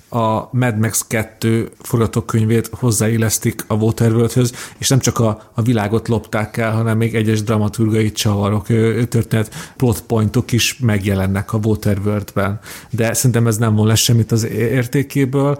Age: 40-59